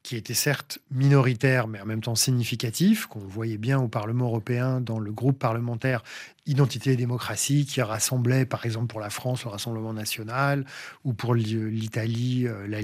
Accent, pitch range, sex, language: French, 125-160 Hz, male, French